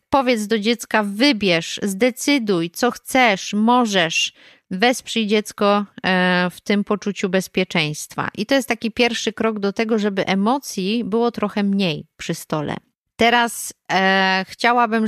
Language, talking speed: Polish, 125 wpm